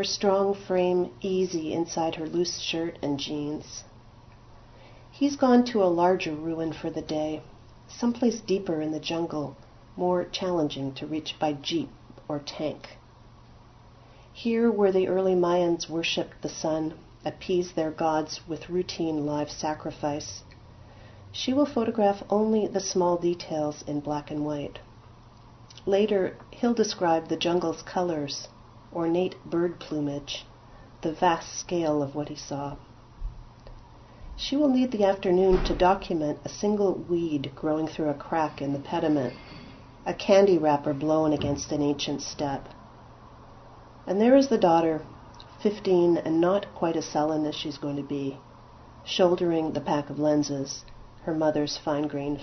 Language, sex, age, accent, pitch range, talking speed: English, female, 40-59, American, 145-180 Hz, 140 wpm